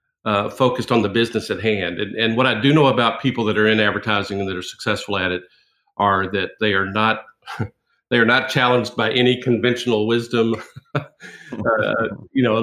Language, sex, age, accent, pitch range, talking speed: English, male, 50-69, American, 100-125 Hz, 200 wpm